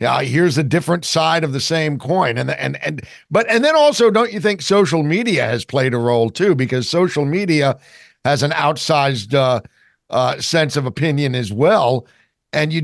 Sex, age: male, 50-69